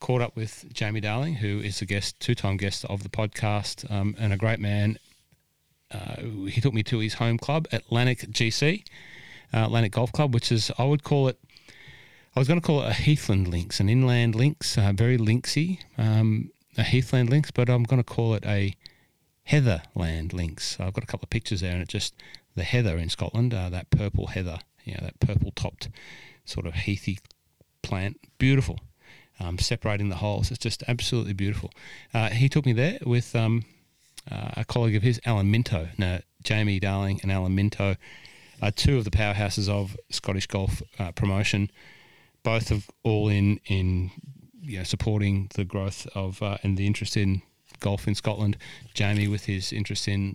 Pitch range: 100-120 Hz